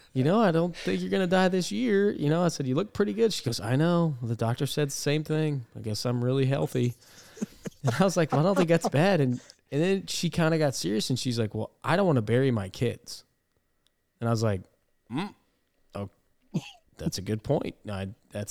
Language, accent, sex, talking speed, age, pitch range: English, American, male, 245 wpm, 20-39, 110-155 Hz